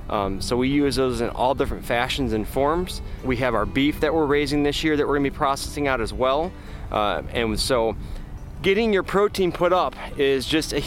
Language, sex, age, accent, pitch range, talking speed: English, male, 30-49, American, 115-155 Hz, 220 wpm